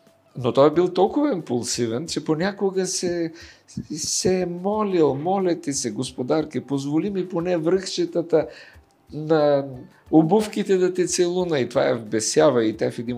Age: 50-69